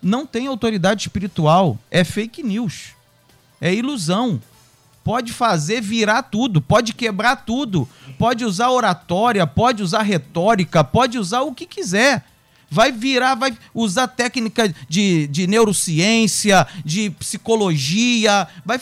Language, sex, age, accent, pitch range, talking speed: Portuguese, male, 40-59, Brazilian, 170-235 Hz, 120 wpm